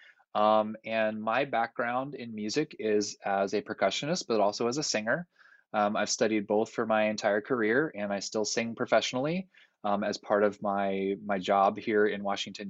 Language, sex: English, male